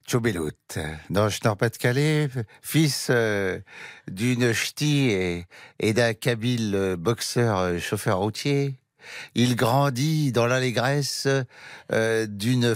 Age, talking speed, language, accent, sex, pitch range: 60-79, 85 wpm, French, French, male, 100-130 Hz